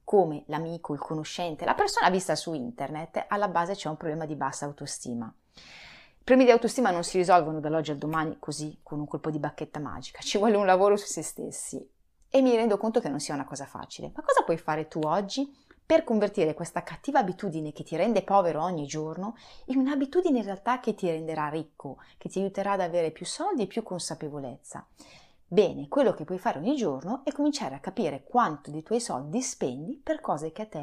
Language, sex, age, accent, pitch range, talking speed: Italian, female, 30-49, native, 155-230 Hz, 210 wpm